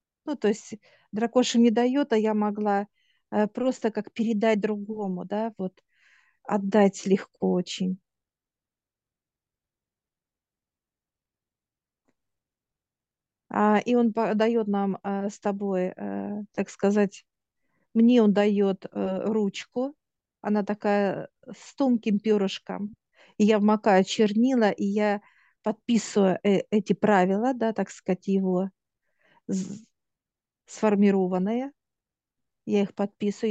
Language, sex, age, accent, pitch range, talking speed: Russian, female, 50-69, native, 195-220 Hz, 100 wpm